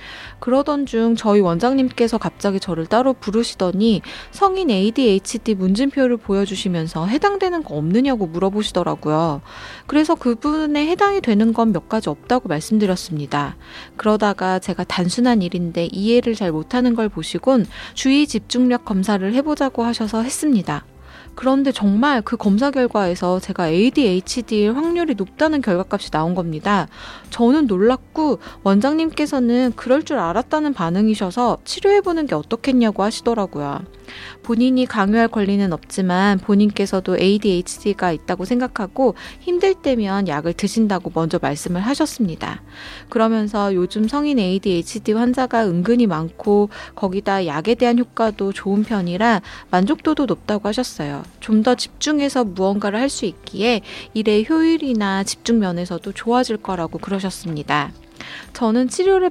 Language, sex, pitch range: Korean, female, 185-250 Hz